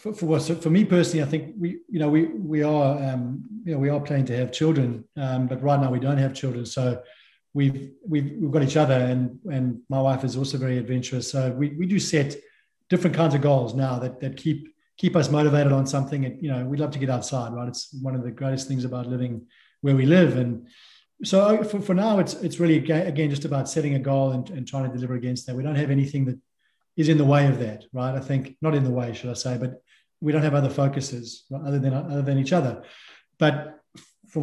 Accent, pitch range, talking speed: Australian, 135-160 Hz, 240 wpm